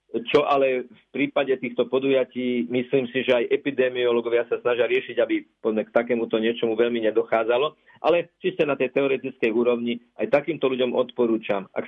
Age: 40-59